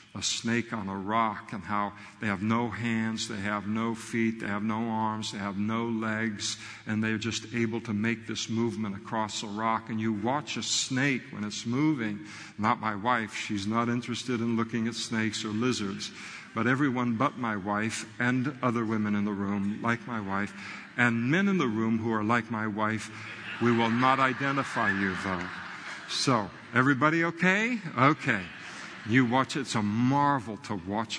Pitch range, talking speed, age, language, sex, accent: 105-120 Hz, 185 wpm, 50-69, English, male, American